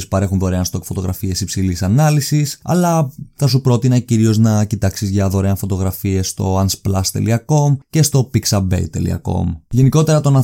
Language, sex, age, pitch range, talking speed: Greek, male, 20-39, 95-115 Hz, 140 wpm